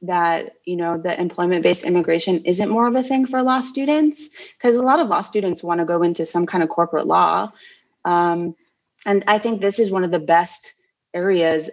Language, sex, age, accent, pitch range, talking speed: English, female, 20-39, American, 170-200 Hz, 205 wpm